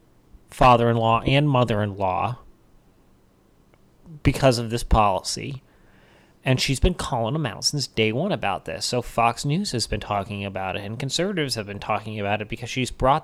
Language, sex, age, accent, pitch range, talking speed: English, male, 30-49, American, 115-145 Hz, 165 wpm